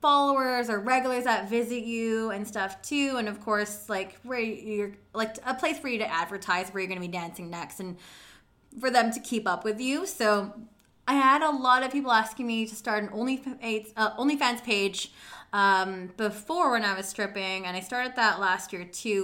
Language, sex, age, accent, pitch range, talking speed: English, female, 20-39, American, 195-245 Hz, 205 wpm